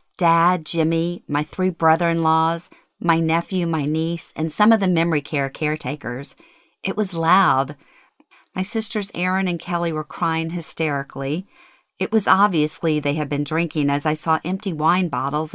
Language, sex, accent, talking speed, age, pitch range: English, female, American, 155 wpm, 50-69, 150-185 Hz